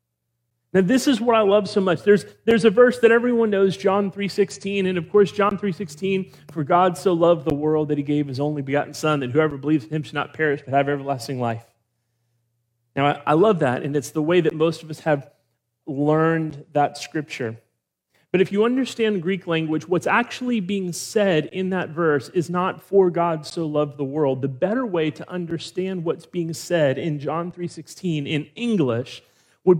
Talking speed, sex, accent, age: 200 wpm, male, American, 30-49